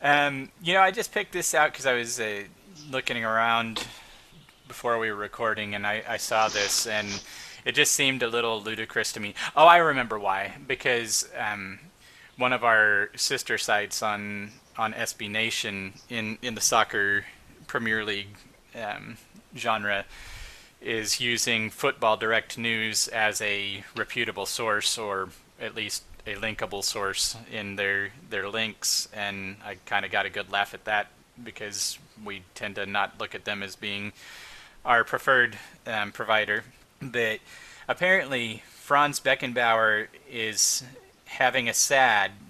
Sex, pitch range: male, 105-120 Hz